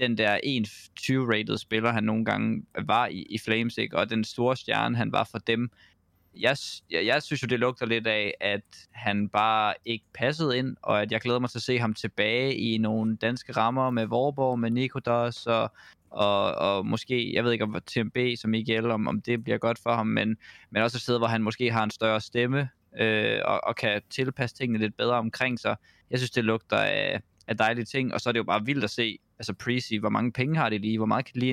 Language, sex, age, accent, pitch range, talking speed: Danish, male, 20-39, native, 110-125 Hz, 240 wpm